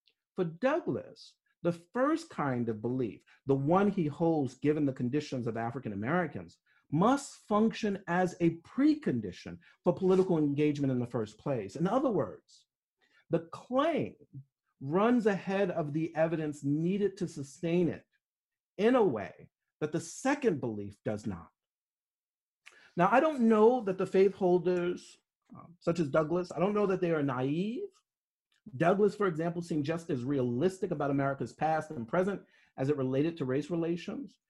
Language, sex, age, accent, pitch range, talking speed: English, male, 50-69, American, 140-205 Hz, 155 wpm